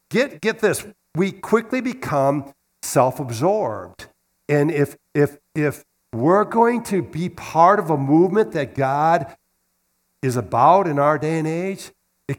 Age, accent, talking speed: 60-79, American, 140 wpm